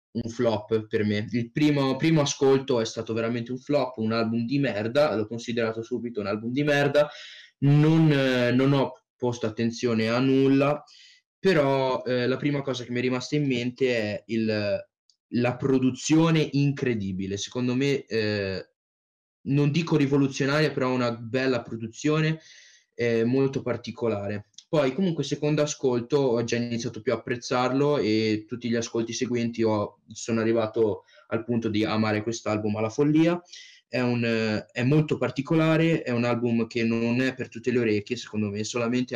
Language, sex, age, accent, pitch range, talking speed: Italian, male, 20-39, native, 115-140 Hz, 160 wpm